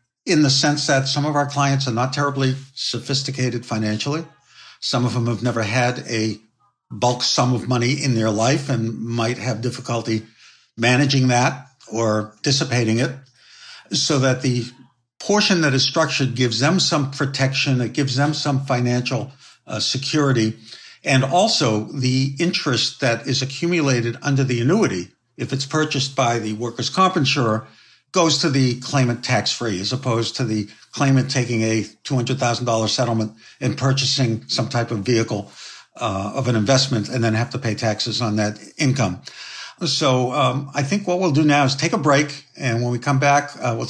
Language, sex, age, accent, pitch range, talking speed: English, male, 60-79, American, 120-140 Hz, 170 wpm